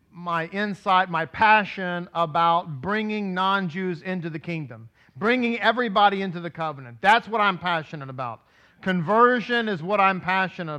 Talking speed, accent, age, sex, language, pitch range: 140 wpm, American, 40-59, male, English, 150-190 Hz